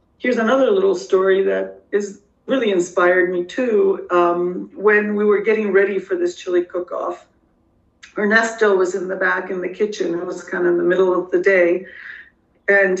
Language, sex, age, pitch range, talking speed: English, female, 50-69, 180-225 Hz, 185 wpm